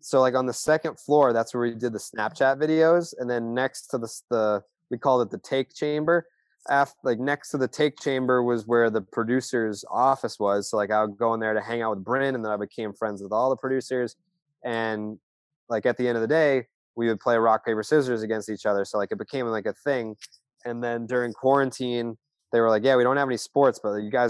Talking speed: 245 wpm